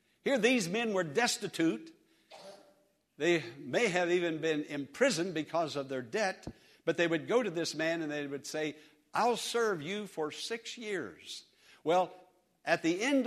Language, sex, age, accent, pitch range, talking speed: English, male, 60-79, American, 145-215 Hz, 165 wpm